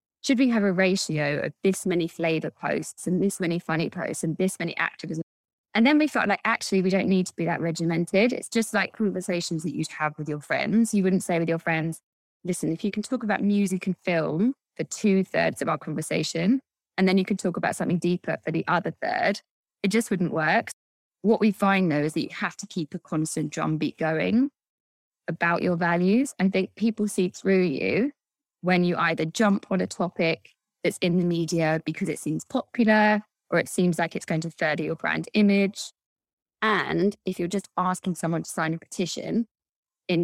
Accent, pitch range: British, 160-200 Hz